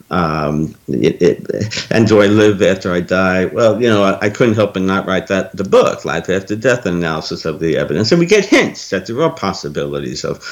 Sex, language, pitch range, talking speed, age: male, English, 90-115 Hz, 205 wpm, 60-79